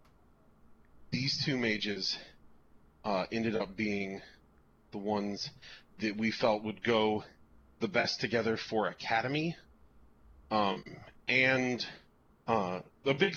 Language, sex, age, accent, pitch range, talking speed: English, male, 30-49, American, 90-130 Hz, 110 wpm